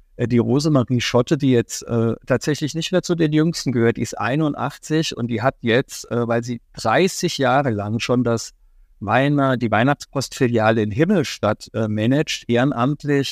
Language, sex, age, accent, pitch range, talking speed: German, male, 50-69, German, 120-145 Hz, 155 wpm